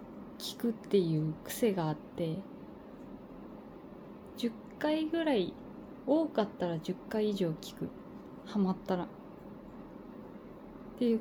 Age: 20-39